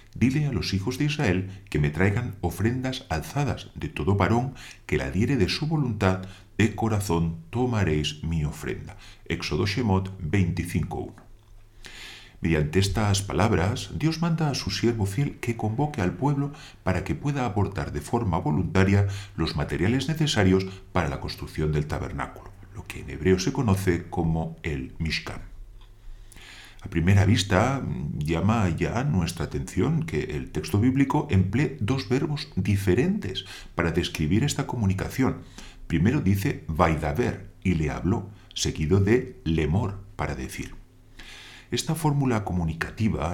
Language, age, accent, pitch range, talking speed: Spanish, 40-59, Spanish, 85-120 Hz, 135 wpm